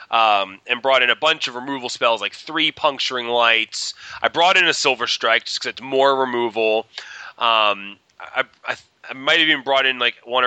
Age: 20-39